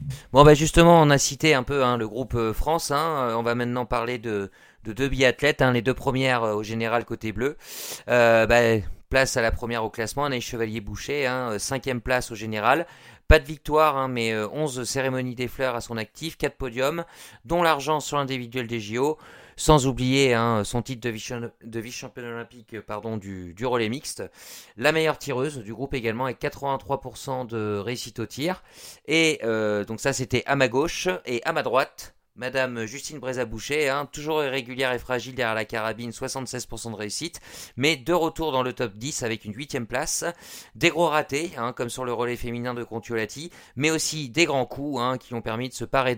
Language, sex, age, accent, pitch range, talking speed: French, male, 40-59, French, 115-140 Hz, 200 wpm